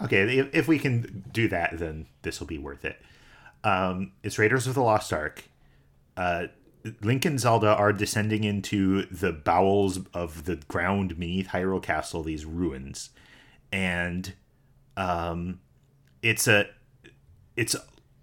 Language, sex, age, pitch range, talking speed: English, male, 30-49, 85-115 Hz, 135 wpm